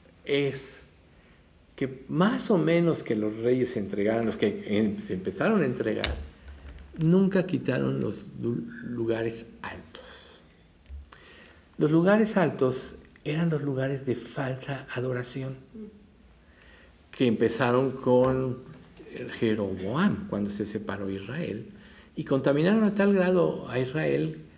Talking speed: 110 wpm